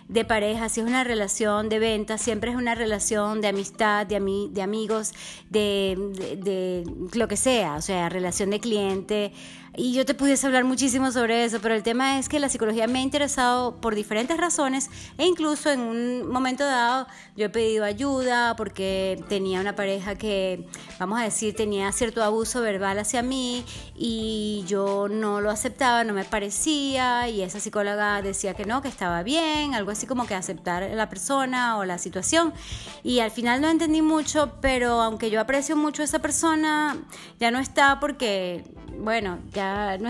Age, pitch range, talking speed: 30-49, 205-265 Hz, 185 wpm